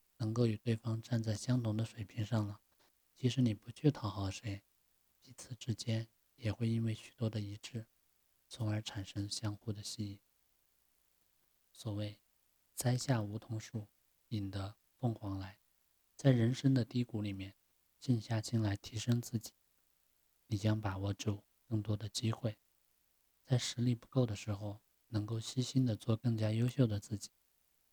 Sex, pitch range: male, 100-120 Hz